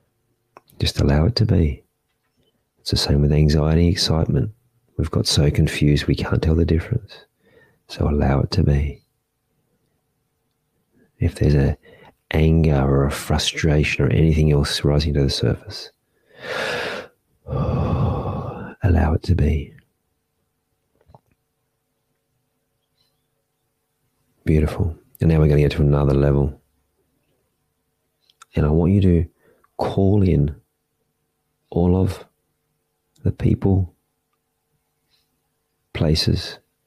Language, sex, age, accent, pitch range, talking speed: English, male, 40-59, Australian, 75-90 Hz, 105 wpm